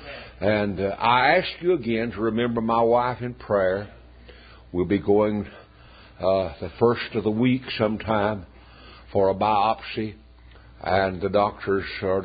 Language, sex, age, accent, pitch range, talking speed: English, male, 60-79, American, 85-110 Hz, 140 wpm